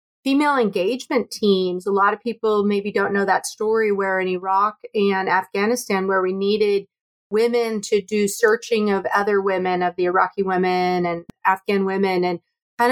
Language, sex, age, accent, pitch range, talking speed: English, female, 30-49, American, 190-220 Hz, 165 wpm